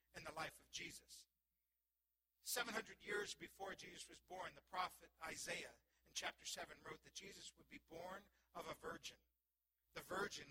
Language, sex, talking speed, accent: English, male, 160 wpm, American